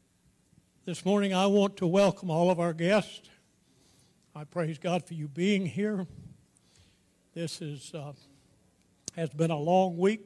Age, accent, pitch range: 60-79, American, 145-180 Hz